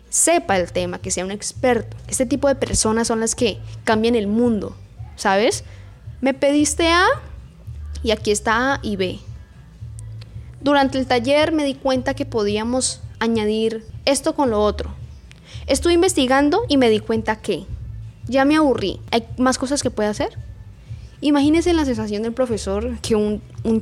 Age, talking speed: 10-29, 160 wpm